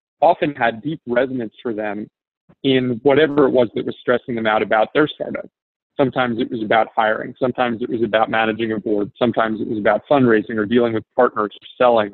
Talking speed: 205 wpm